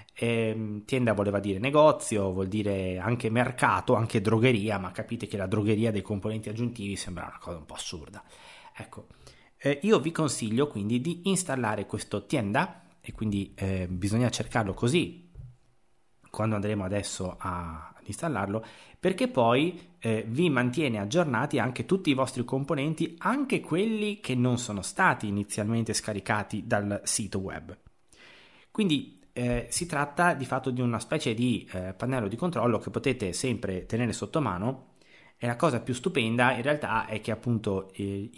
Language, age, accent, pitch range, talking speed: Italian, 30-49, native, 100-130 Hz, 155 wpm